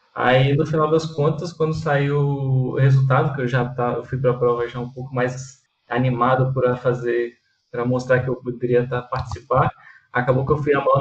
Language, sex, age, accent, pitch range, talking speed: Portuguese, male, 20-39, Brazilian, 130-160 Hz, 205 wpm